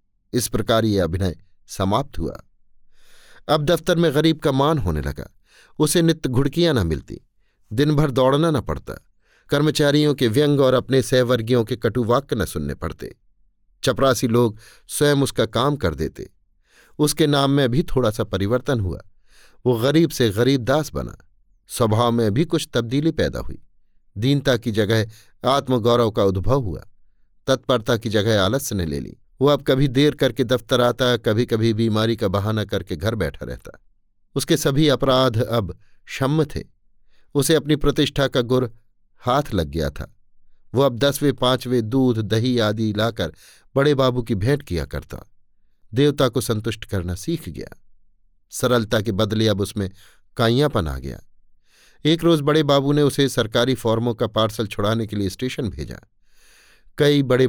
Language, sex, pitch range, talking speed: Hindi, male, 100-140 Hz, 160 wpm